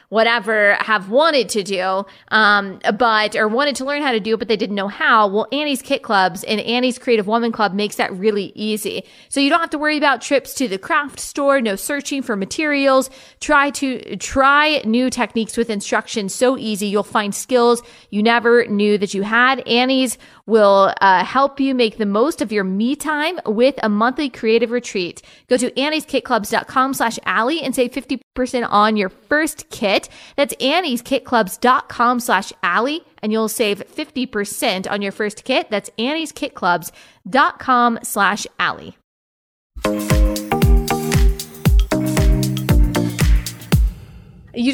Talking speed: 150 wpm